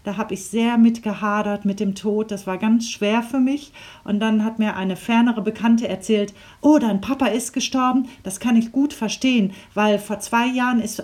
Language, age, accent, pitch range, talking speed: German, 40-59, German, 180-220 Hz, 200 wpm